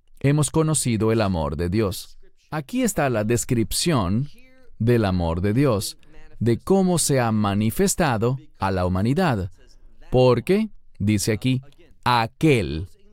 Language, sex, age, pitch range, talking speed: English, male, 40-59, 110-160 Hz, 120 wpm